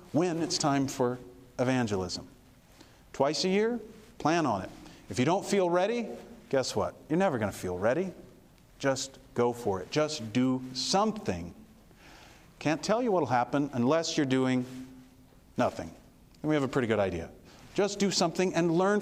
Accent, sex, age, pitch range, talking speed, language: American, male, 40-59, 130-185 Hz, 165 wpm, English